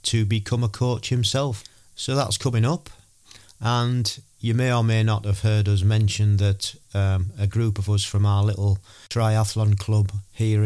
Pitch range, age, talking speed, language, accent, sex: 100-115 Hz, 40-59, 175 wpm, English, British, male